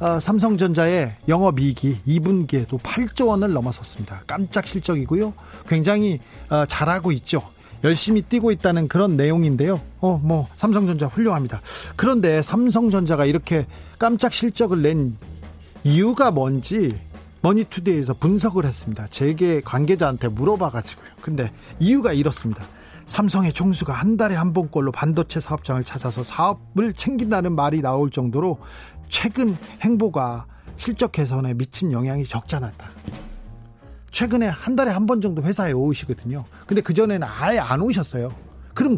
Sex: male